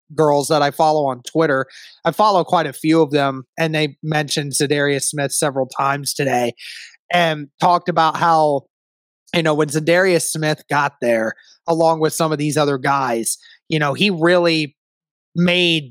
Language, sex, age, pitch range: English, male, 20-39, 145-170 Hz